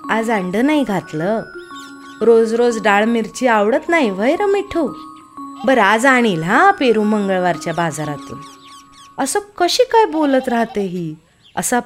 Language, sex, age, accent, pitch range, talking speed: Marathi, female, 30-49, native, 180-255 Hz, 135 wpm